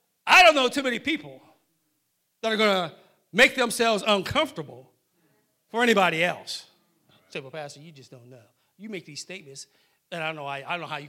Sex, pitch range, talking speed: male, 150-200 Hz, 185 wpm